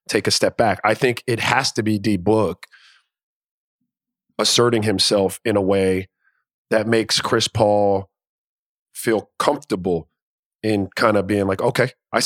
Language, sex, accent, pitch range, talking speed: English, male, American, 100-120 Hz, 145 wpm